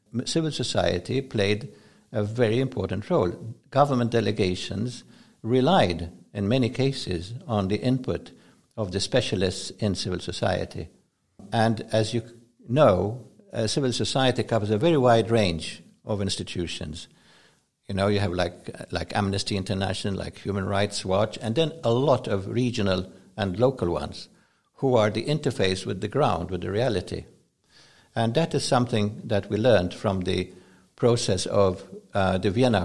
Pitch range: 95-120 Hz